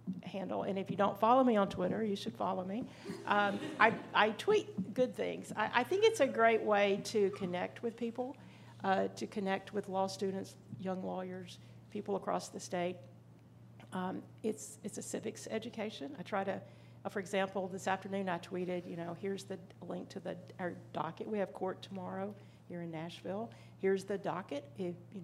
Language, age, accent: English, 50-69, American